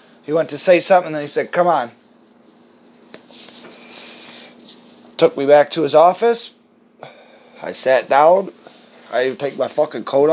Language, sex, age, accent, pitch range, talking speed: English, male, 20-39, American, 130-180 Hz, 140 wpm